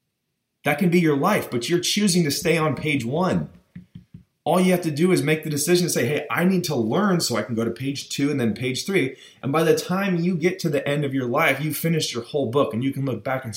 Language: English